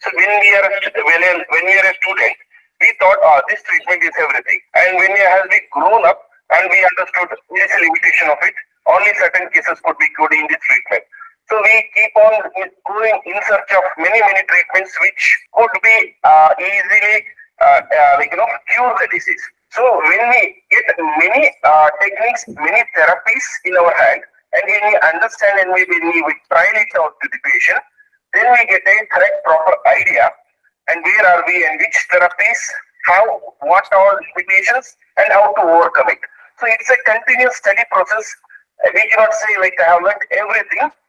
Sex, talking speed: male, 185 wpm